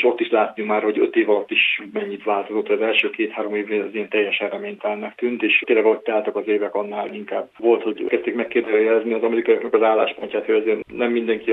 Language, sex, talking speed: Hungarian, male, 205 wpm